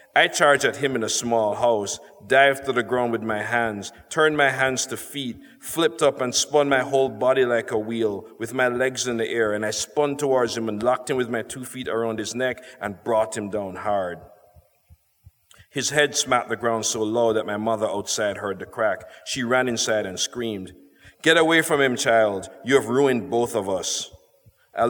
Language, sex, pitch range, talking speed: English, male, 110-135 Hz, 210 wpm